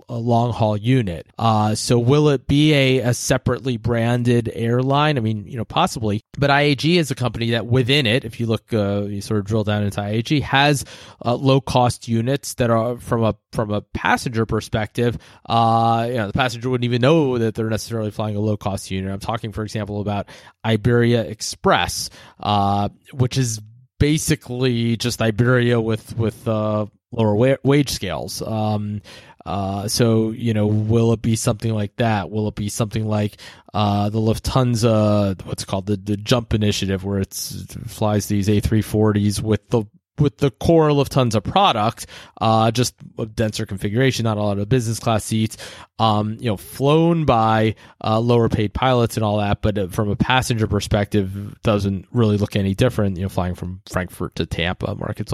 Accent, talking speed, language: American, 180 wpm, English